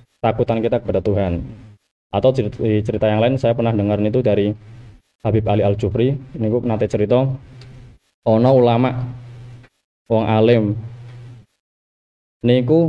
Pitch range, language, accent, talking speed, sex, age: 110-130 Hz, Indonesian, native, 120 wpm, male, 20-39